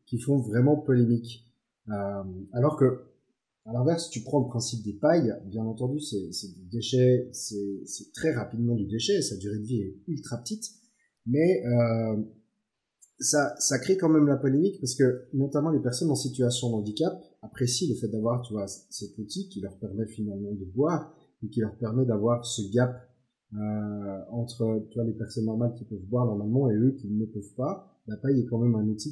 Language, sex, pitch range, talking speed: French, male, 110-140 Hz, 200 wpm